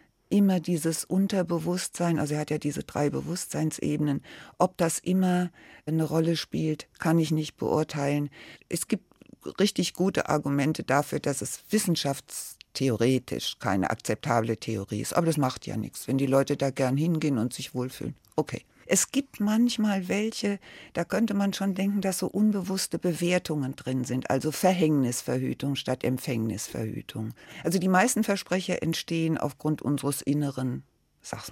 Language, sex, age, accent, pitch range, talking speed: German, female, 60-79, German, 135-185 Hz, 145 wpm